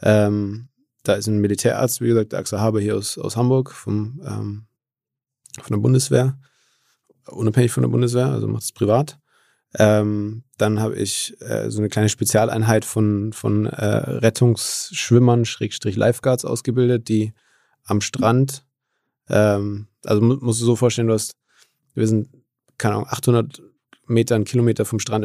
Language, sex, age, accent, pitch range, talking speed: German, male, 20-39, German, 105-125 Hz, 150 wpm